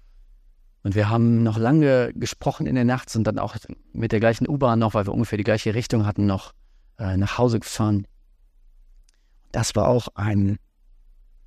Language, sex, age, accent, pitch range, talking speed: German, male, 40-59, German, 95-125 Hz, 165 wpm